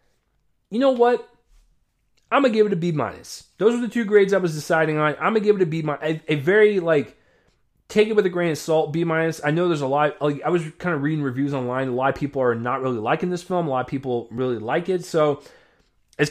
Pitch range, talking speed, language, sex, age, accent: 120-160 Hz, 265 wpm, English, male, 20-39, American